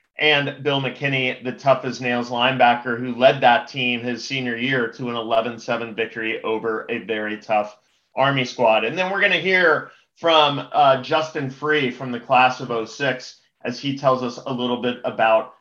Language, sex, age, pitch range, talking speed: English, male, 30-49, 120-150 Hz, 175 wpm